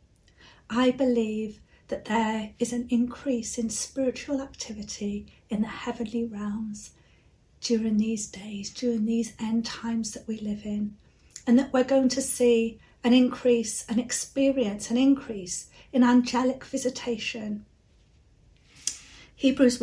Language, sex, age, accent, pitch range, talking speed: English, female, 40-59, British, 215-260 Hz, 125 wpm